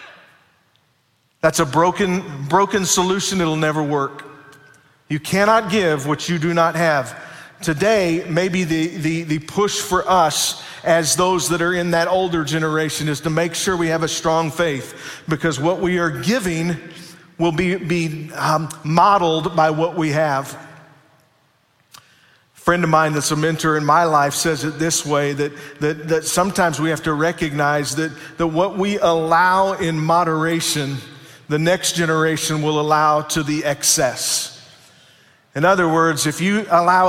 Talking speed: 160 wpm